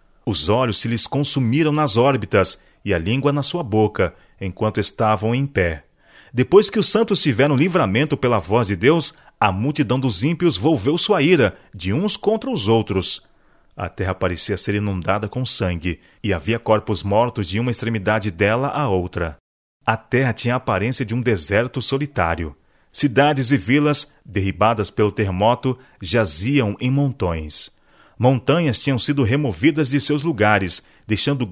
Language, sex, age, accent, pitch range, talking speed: Portuguese, male, 40-59, Brazilian, 105-145 Hz, 155 wpm